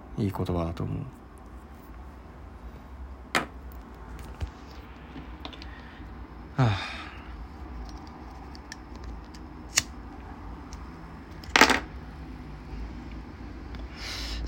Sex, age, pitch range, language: male, 20-39, 80-100 Hz, Japanese